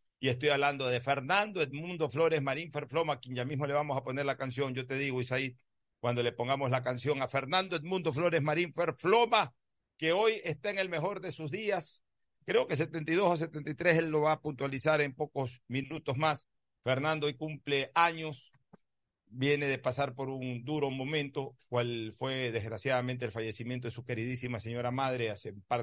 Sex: male